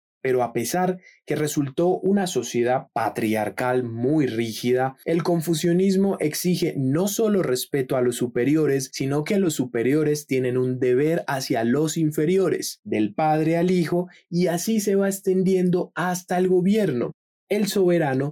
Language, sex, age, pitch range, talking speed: Spanish, male, 20-39, 130-180 Hz, 140 wpm